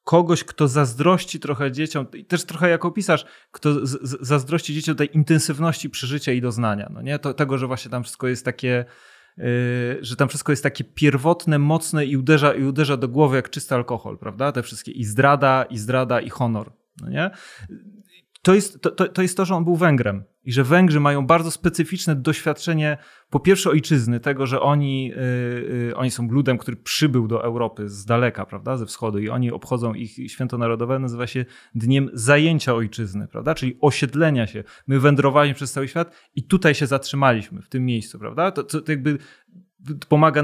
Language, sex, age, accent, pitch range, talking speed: Polish, male, 30-49, native, 120-155 Hz, 185 wpm